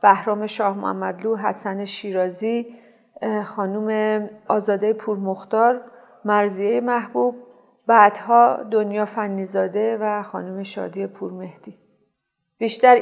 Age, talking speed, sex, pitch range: 40-59, 85 wpm, female, 195-235 Hz